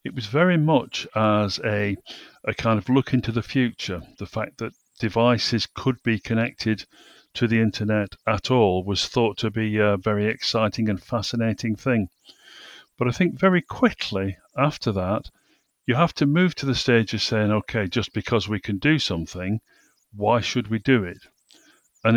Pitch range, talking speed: 105-130 Hz, 175 wpm